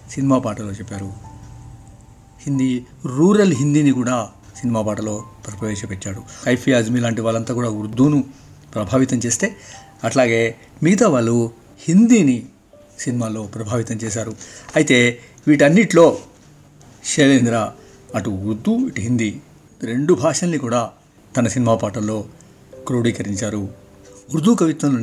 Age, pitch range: 60-79, 110-140 Hz